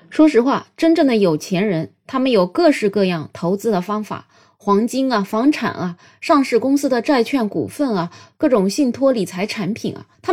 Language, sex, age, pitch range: Chinese, female, 20-39, 195-285 Hz